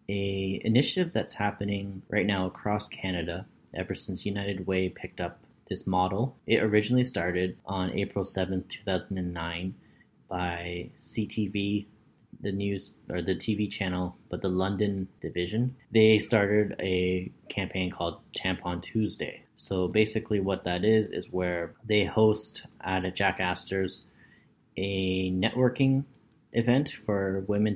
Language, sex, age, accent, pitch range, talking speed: English, male, 30-49, American, 90-105 Hz, 130 wpm